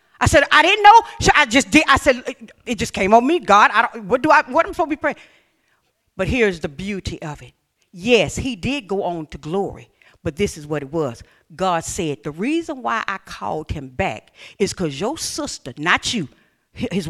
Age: 50-69